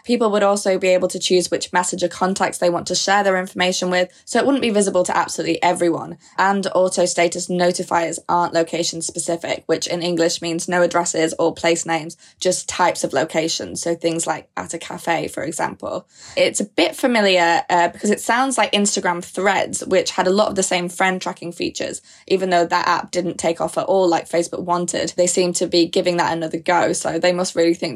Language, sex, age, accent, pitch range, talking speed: English, female, 20-39, British, 170-185 Hz, 210 wpm